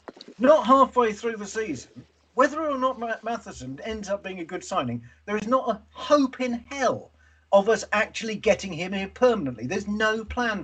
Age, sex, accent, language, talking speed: 40-59, male, British, English, 185 wpm